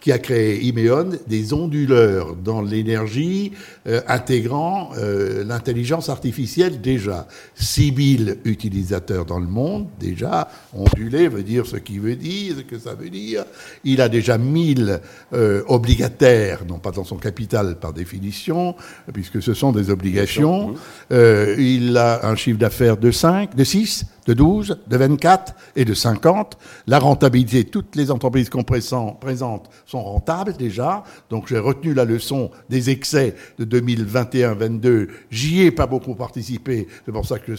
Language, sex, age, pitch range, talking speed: French, male, 60-79, 110-140 Hz, 155 wpm